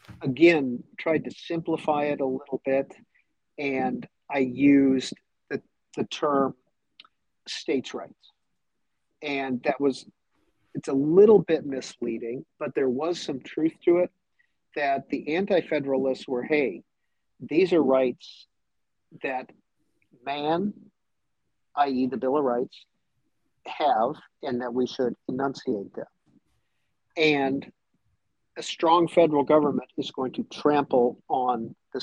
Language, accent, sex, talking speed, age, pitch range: English, American, male, 120 wpm, 50-69, 120-155 Hz